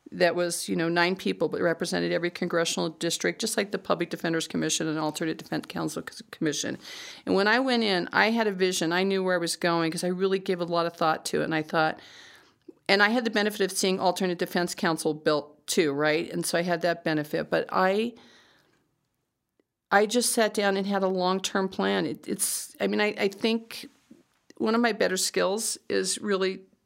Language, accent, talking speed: English, American, 210 wpm